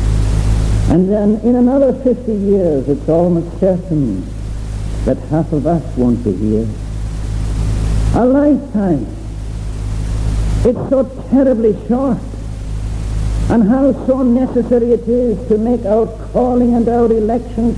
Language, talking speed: English, 120 wpm